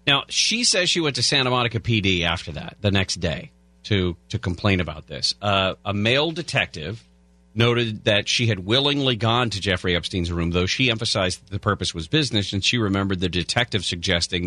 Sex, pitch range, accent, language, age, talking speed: male, 90-125 Hz, American, English, 40-59, 195 wpm